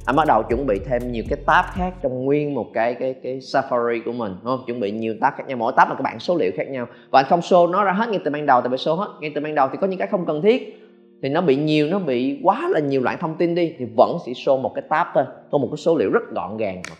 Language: Vietnamese